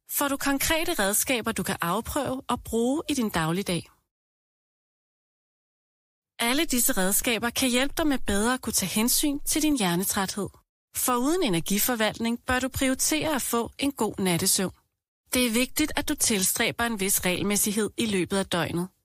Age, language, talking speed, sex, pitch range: 30-49, Danish, 160 wpm, female, 195-260 Hz